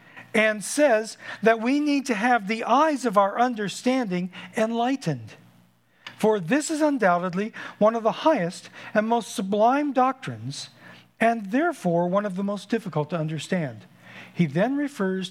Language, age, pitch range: English, 50-69, 140-220 Hz